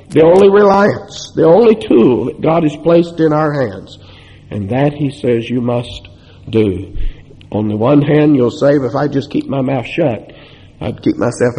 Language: English